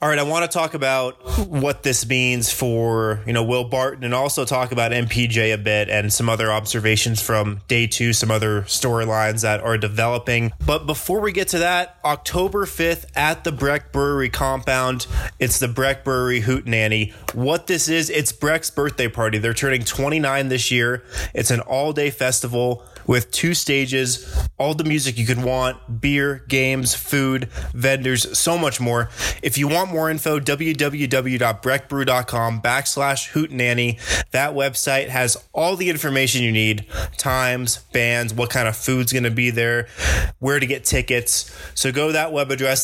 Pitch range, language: 115-135 Hz, English